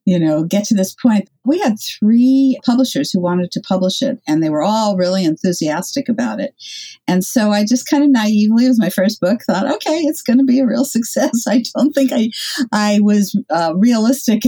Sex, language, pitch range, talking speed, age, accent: female, English, 175-270 Hz, 215 wpm, 50-69, American